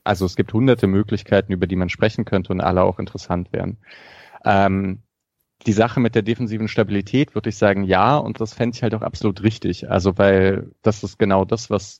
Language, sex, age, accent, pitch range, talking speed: German, male, 30-49, German, 95-120 Hz, 205 wpm